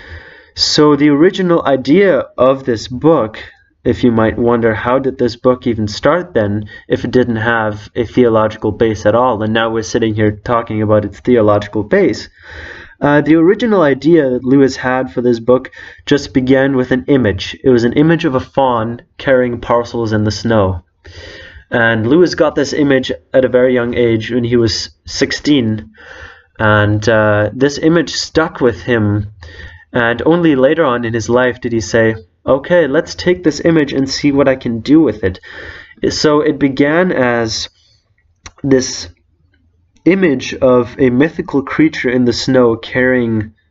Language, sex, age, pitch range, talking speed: English, male, 20-39, 110-130 Hz, 165 wpm